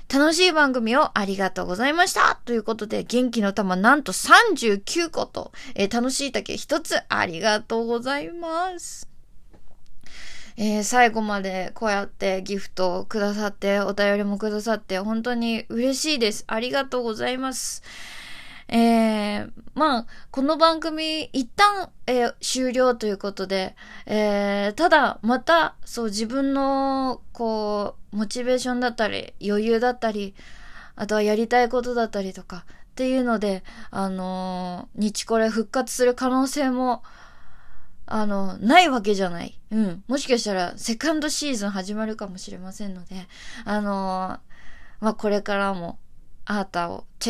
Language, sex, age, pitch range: Japanese, female, 20-39, 200-255 Hz